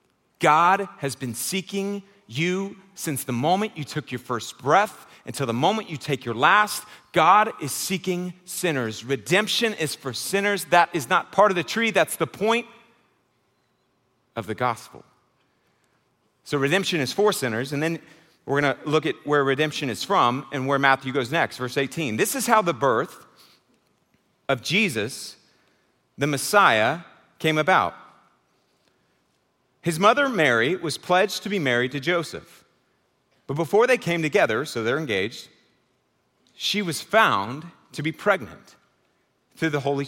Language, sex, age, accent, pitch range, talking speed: English, male, 40-59, American, 130-190 Hz, 155 wpm